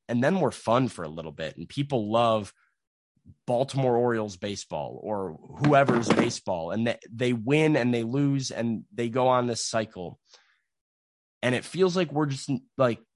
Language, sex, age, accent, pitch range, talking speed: English, male, 20-39, American, 110-140 Hz, 170 wpm